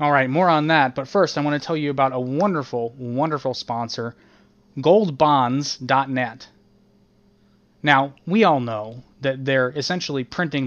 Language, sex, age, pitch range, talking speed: English, male, 20-39, 120-145 Hz, 145 wpm